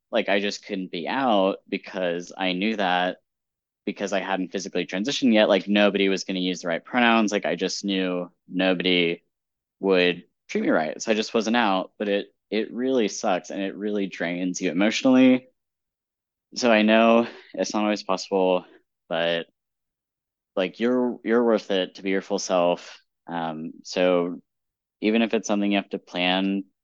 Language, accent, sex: English, American, male